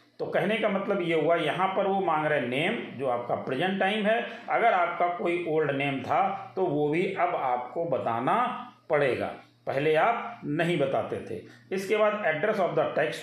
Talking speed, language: 190 wpm, Hindi